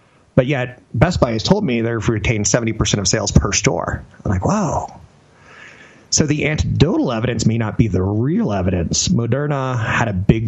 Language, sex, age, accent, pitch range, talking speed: English, male, 30-49, American, 100-130 Hz, 180 wpm